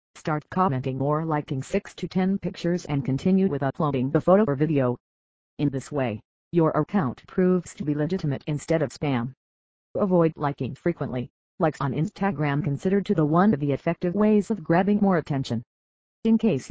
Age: 50-69